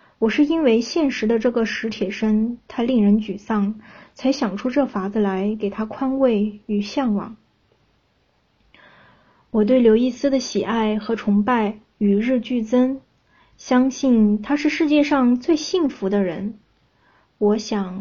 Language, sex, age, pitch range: Chinese, female, 20-39, 210-255 Hz